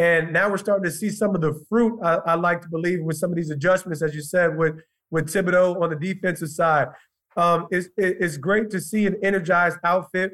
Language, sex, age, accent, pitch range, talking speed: English, male, 30-49, American, 170-195 Hz, 225 wpm